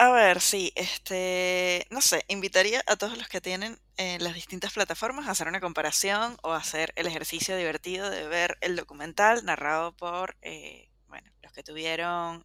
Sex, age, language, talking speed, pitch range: female, 20-39, Spanish, 180 wpm, 160-200 Hz